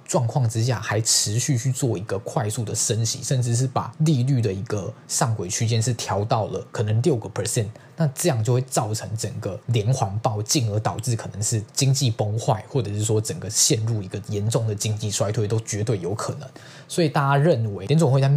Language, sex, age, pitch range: Chinese, male, 20-39, 110-135 Hz